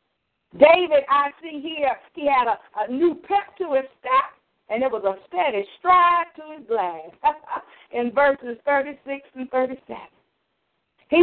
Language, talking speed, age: English, 150 wpm, 50-69